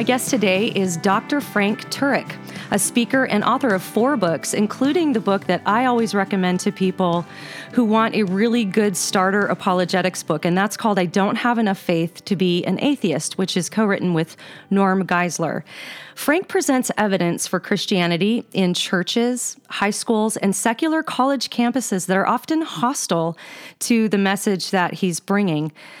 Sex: female